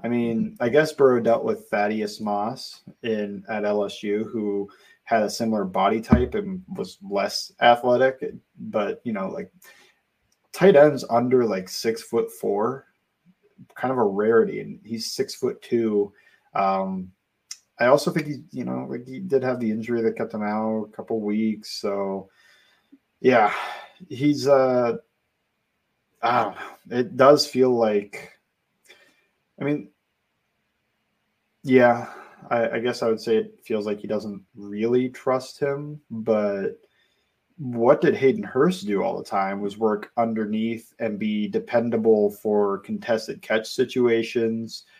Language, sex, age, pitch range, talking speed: English, male, 20-39, 105-135 Hz, 145 wpm